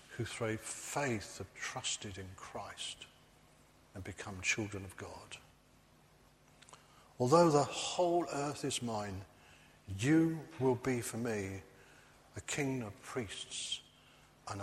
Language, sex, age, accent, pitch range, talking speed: English, male, 50-69, British, 100-135 Hz, 115 wpm